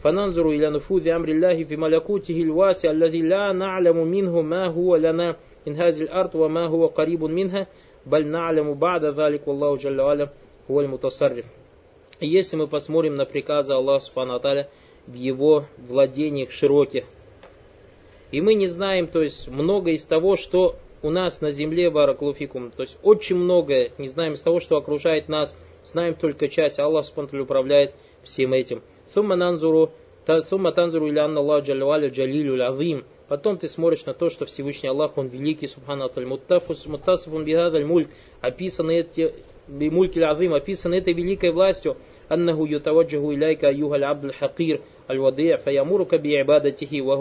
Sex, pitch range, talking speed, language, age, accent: male, 145-175 Hz, 85 wpm, Russian, 20-39, native